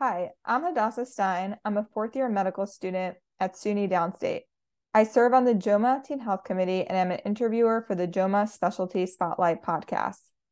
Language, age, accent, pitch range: English, 20-39, American, 180-215 Hz